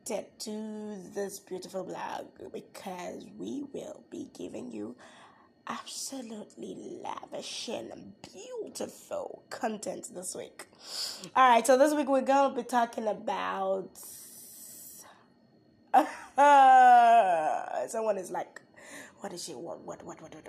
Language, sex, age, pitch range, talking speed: English, female, 20-39, 215-300 Hz, 115 wpm